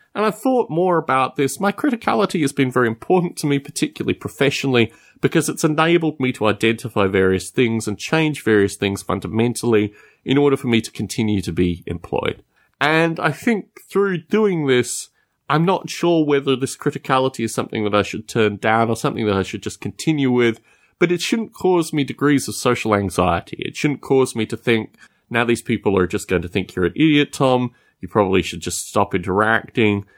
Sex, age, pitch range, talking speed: male, 30-49, 105-160 Hz, 195 wpm